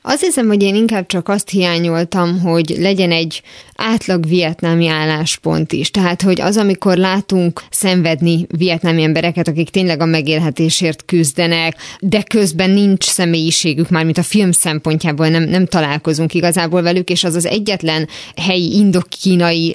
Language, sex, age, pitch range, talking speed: Hungarian, female, 20-39, 165-195 Hz, 145 wpm